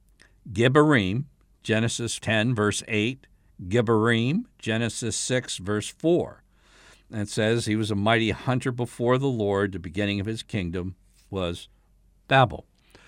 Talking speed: 130 wpm